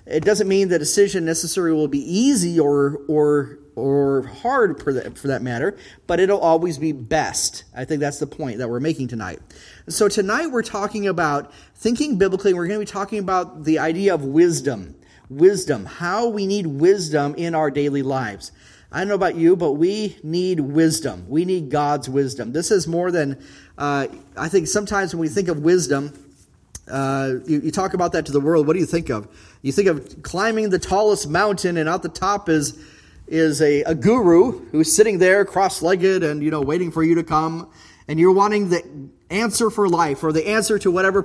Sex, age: male, 30-49